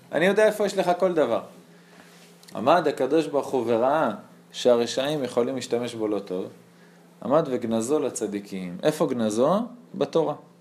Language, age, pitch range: Hebrew, 20-39, 120-165 Hz